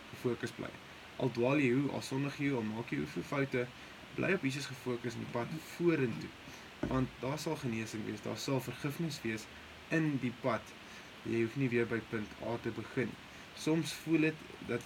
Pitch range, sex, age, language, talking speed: 115-135 Hz, male, 20-39, English, 190 wpm